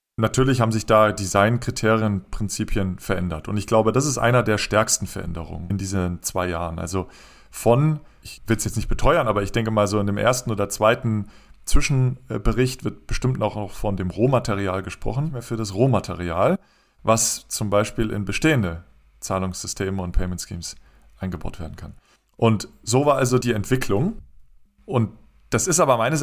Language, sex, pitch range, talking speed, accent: German, male, 100-125 Hz, 165 wpm, German